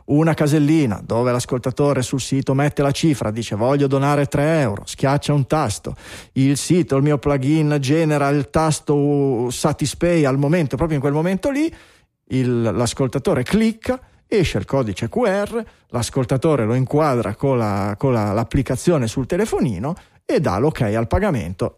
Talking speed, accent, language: 145 wpm, native, Italian